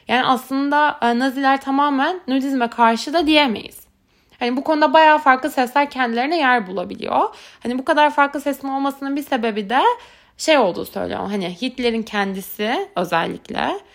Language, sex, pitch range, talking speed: Turkish, female, 210-285 Hz, 140 wpm